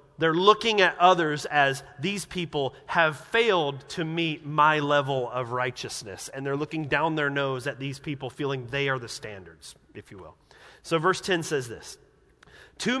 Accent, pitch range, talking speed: American, 140-190 Hz, 175 wpm